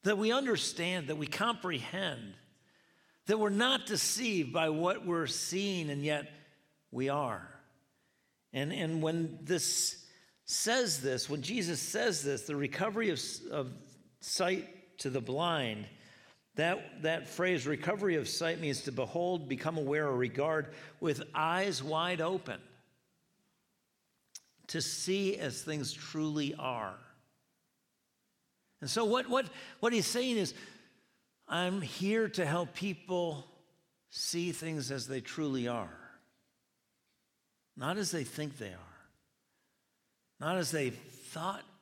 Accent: American